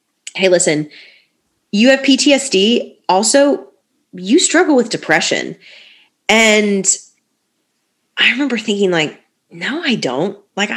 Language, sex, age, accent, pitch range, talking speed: English, female, 30-49, American, 160-220 Hz, 105 wpm